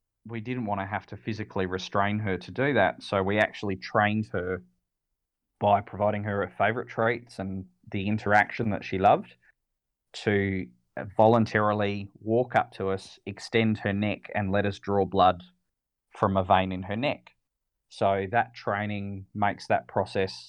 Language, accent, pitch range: English, Australian, 95-110 Hz